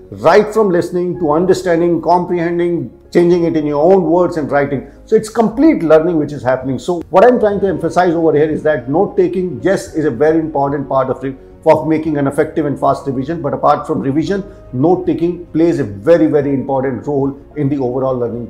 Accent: native